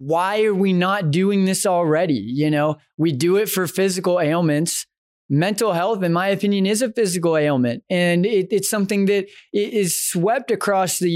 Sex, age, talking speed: male, 20-39, 170 wpm